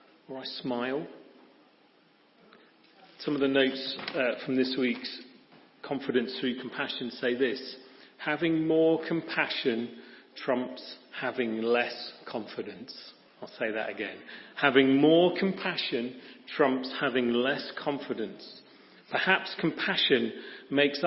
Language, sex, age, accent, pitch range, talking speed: English, male, 40-59, British, 125-160 Hz, 105 wpm